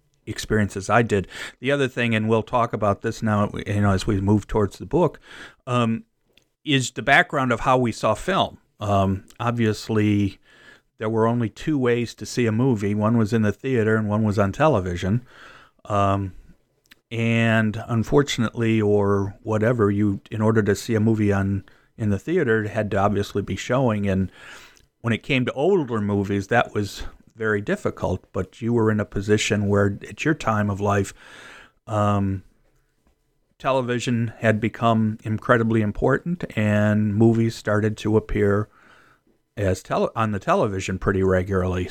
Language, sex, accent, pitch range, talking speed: English, male, American, 100-115 Hz, 160 wpm